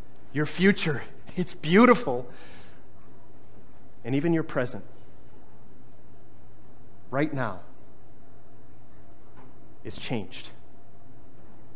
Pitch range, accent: 145-195 Hz, American